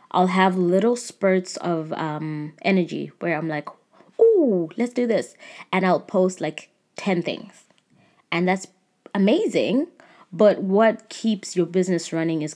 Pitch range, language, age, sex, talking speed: 165-195 Hz, English, 20-39, female, 145 wpm